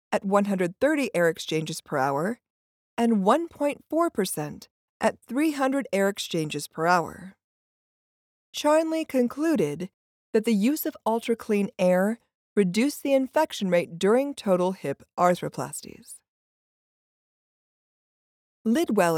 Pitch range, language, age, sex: 180-260 Hz, English, 40-59, female